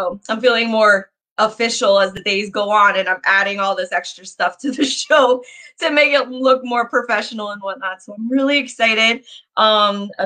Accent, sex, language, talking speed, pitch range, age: American, female, English, 195 wpm, 200-260 Hz, 20-39